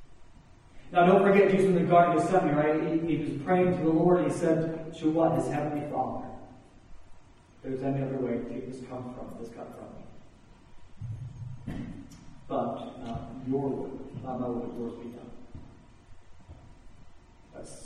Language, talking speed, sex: English, 160 wpm, male